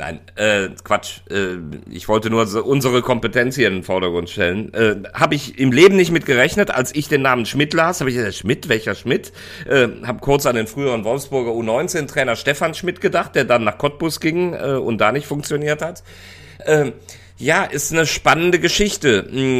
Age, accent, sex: 40-59, German, male